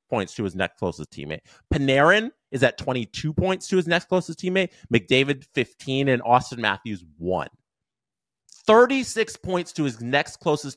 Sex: male